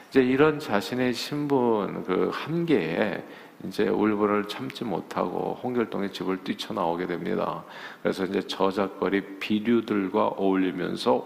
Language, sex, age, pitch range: Korean, male, 50-69, 95-125 Hz